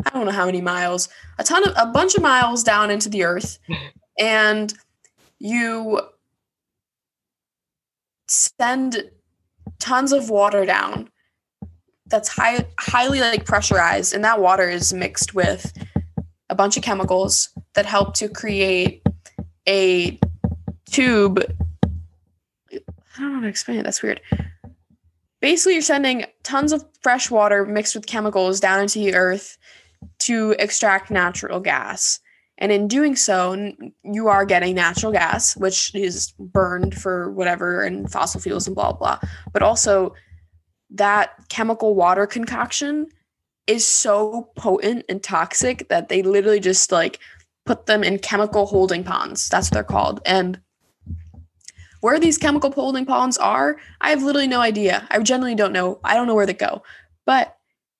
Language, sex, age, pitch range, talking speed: English, female, 10-29, 180-235 Hz, 145 wpm